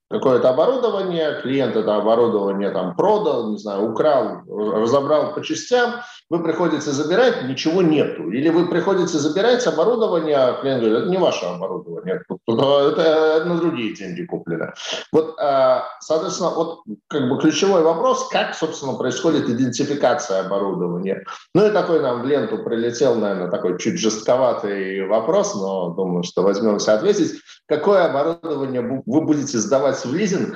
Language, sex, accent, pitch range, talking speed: Russian, male, native, 105-165 Hz, 140 wpm